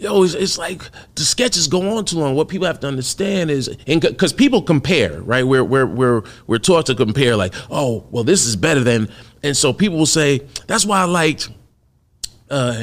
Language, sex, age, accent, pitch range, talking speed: English, male, 40-59, American, 120-155 Hz, 210 wpm